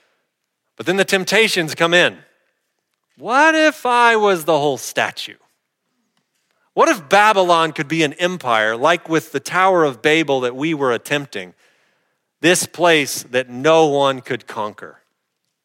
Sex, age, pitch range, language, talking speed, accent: male, 40-59, 150-190 Hz, English, 140 wpm, American